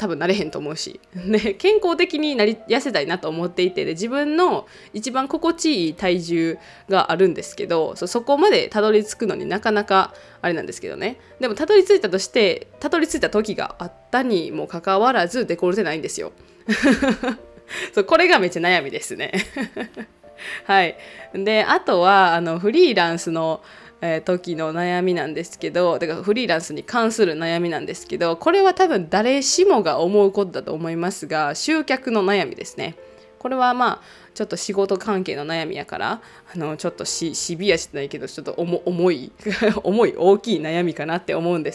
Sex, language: female, Japanese